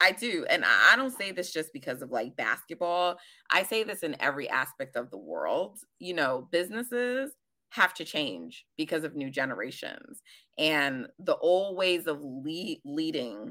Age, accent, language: 30-49, American, English